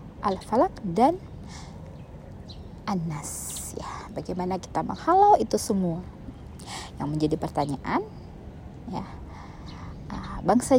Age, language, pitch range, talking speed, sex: 20-39, Indonesian, 155-225 Hz, 85 wpm, female